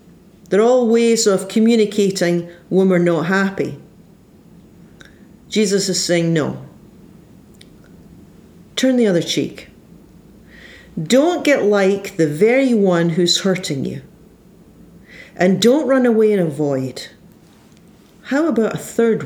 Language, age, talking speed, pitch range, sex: English, 40-59, 115 wpm, 185-235 Hz, female